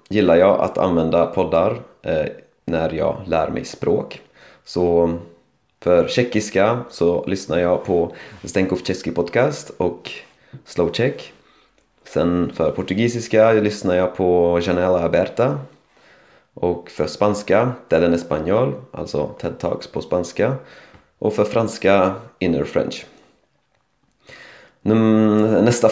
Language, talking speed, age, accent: Swedish, 105 wpm, 30-49, native